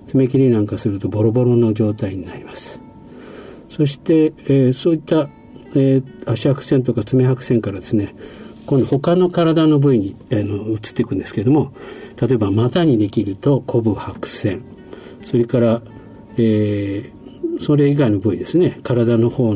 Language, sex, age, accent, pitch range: Japanese, male, 50-69, native, 110-140 Hz